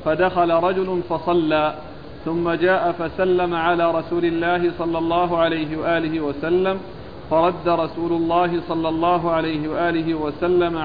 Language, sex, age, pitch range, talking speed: Arabic, male, 40-59, 160-185 Hz, 120 wpm